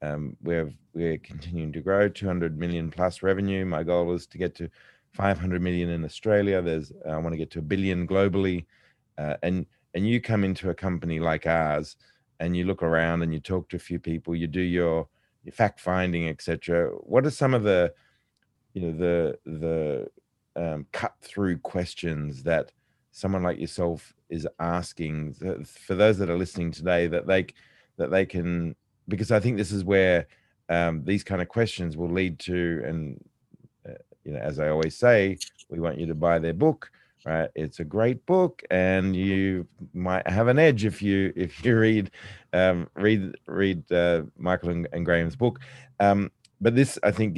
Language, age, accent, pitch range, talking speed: English, 30-49, Australian, 85-100 Hz, 185 wpm